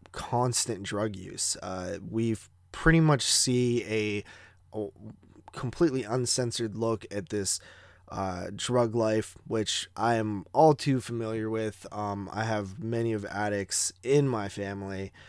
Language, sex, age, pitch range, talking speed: English, male, 20-39, 95-125 Hz, 135 wpm